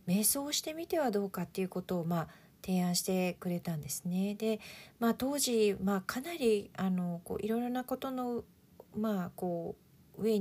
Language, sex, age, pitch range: Japanese, female, 40-59, 175-230 Hz